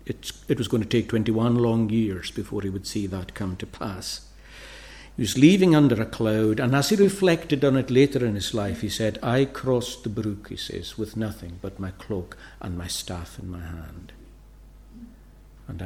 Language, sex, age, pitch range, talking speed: English, male, 60-79, 95-125 Hz, 200 wpm